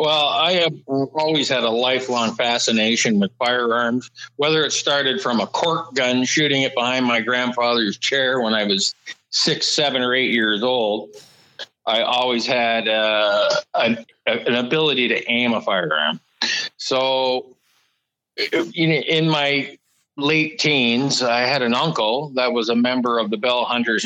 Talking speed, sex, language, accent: 145 wpm, male, English, American